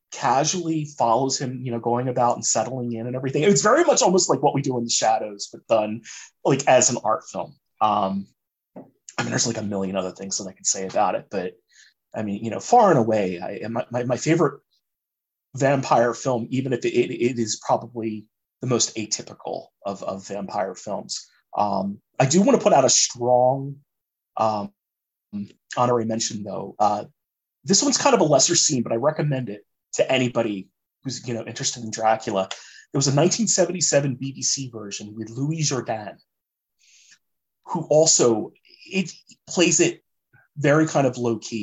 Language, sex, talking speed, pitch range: English, male, 180 wpm, 110-145 Hz